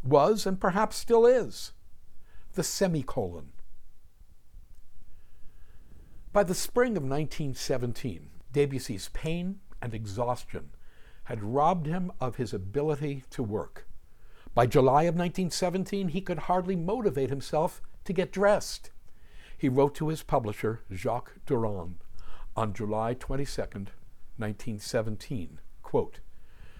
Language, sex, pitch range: English, male, 110-170 Hz